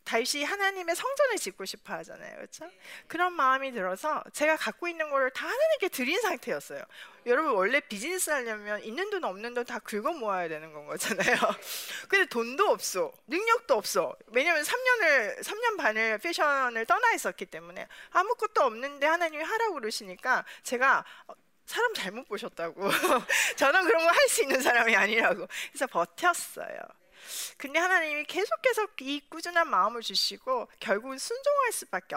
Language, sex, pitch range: Korean, female, 240-365 Hz